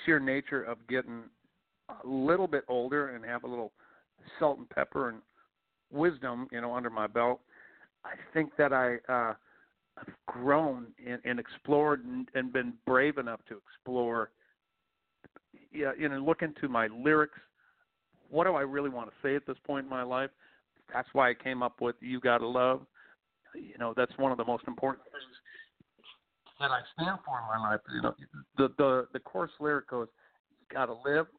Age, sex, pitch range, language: 50-69, male, 120-145 Hz, English